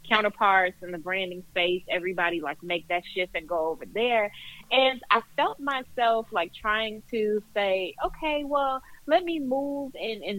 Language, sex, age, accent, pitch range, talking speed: English, female, 30-49, American, 175-220 Hz, 170 wpm